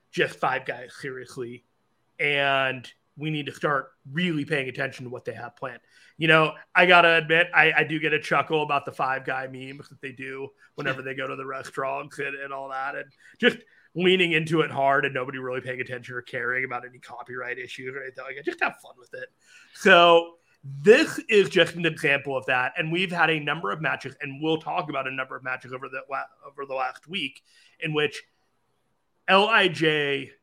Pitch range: 130-160 Hz